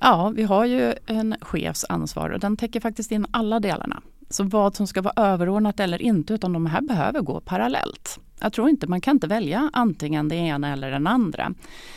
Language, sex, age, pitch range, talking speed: Swedish, female, 30-49, 150-225 Hz, 200 wpm